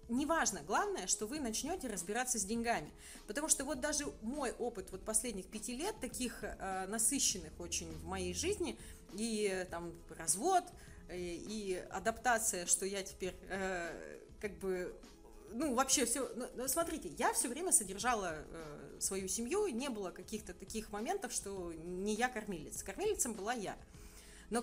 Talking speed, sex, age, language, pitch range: 150 wpm, female, 30-49, Russian, 195-265 Hz